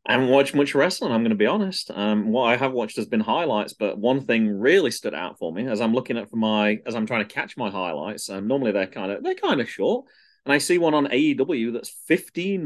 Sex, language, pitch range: male, English, 110-160 Hz